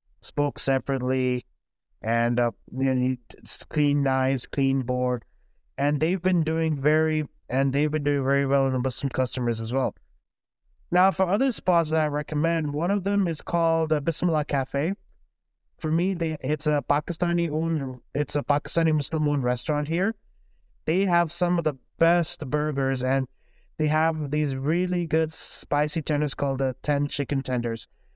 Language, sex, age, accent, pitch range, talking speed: English, male, 20-39, American, 135-160 Hz, 160 wpm